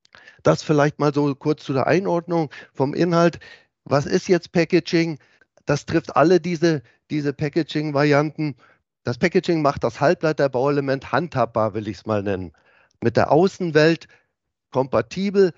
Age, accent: 50-69, German